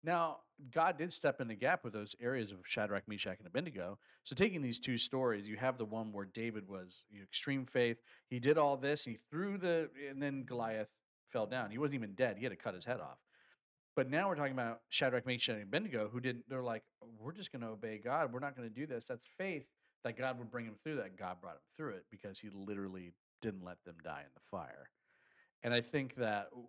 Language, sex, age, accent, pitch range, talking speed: English, male, 40-59, American, 100-130 Hz, 235 wpm